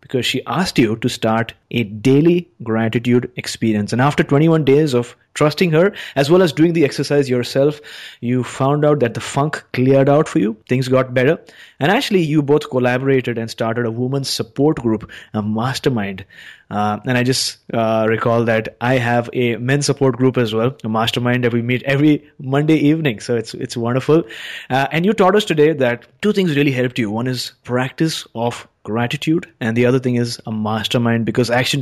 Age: 20-39